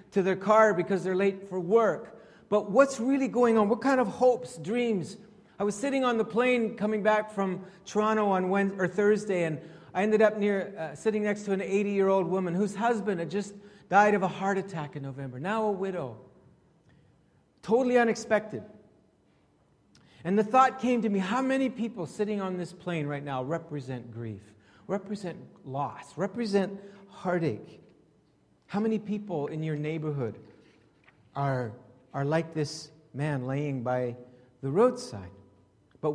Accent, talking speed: American, 160 wpm